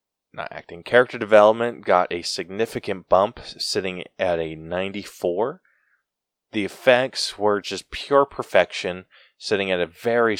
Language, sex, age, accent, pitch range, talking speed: English, male, 20-39, American, 85-115 Hz, 125 wpm